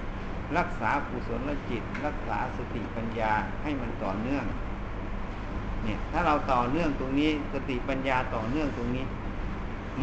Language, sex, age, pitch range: Thai, male, 60-79, 100-140 Hz